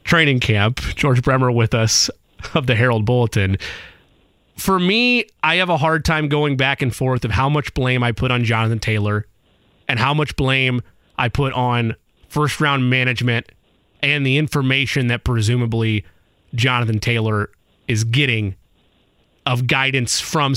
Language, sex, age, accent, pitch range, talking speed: English, male, 30-49, American, 120-160 Hz, 150 wpm